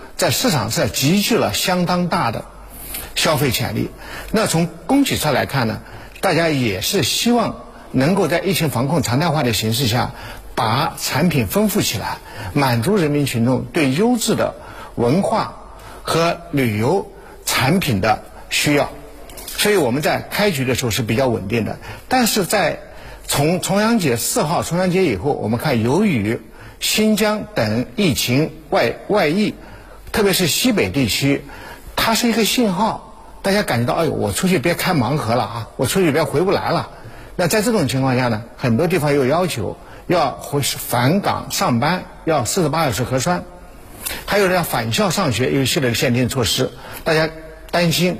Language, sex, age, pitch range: Chinese, male, 60-79, 120-185 Hz